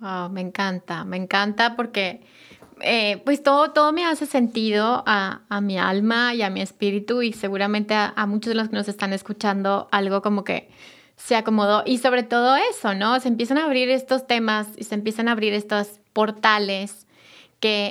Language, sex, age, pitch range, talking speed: Spanish, female, 20-39, 205-245 Hz, 185 wpm